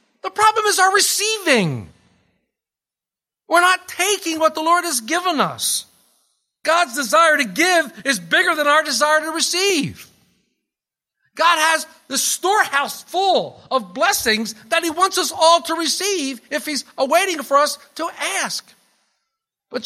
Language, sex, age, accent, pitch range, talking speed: English, male, 50-69, American, 225-340 Hz, 140 wpm